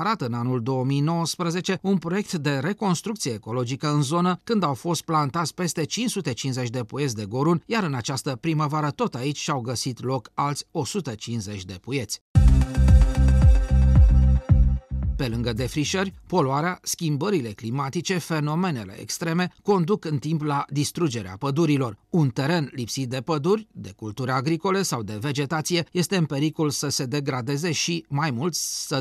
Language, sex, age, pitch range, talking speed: Romanian, male, 40-59, 120-170 Hz, 145 wpm